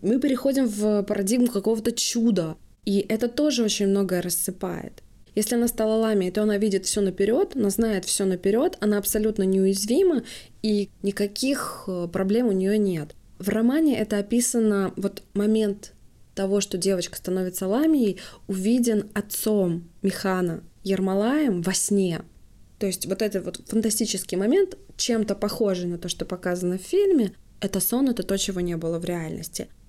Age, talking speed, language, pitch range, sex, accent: 20-39, 150 wpm, Russian, 180-215 Hz, female, native